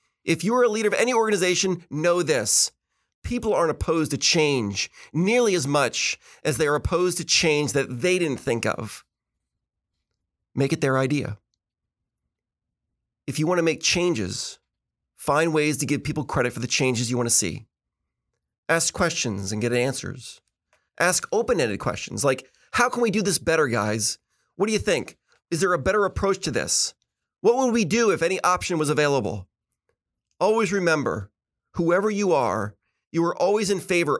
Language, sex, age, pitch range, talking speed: English, male, 30-49, 125-190 Hz, 170 wpm